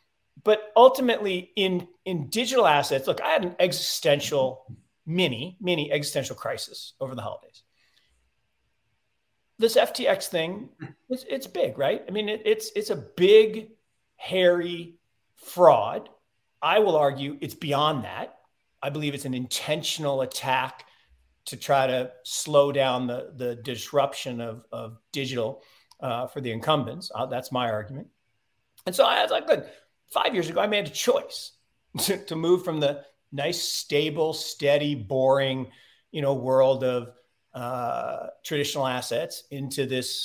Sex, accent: male, American